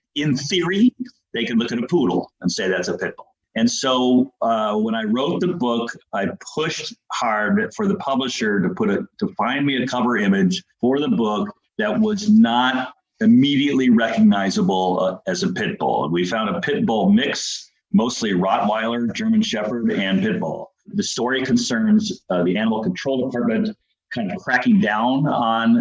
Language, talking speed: English, 175 wpm